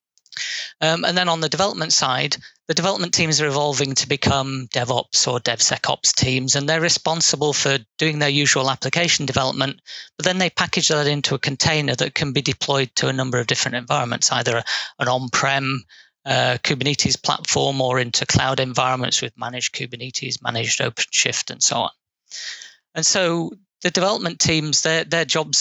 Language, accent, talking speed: English, British, 165 wpm